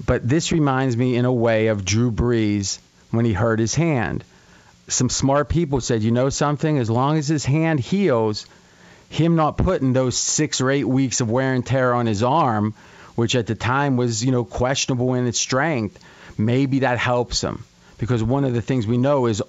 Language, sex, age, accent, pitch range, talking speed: English, male, 40-59, American, 115-140 Hz, 205 wpm